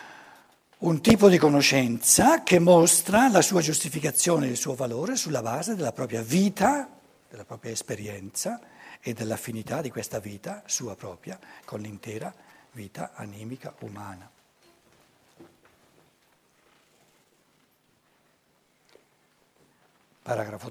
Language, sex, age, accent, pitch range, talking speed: Italian, male, 60-79, native, 130-185 Hz, 100 wpm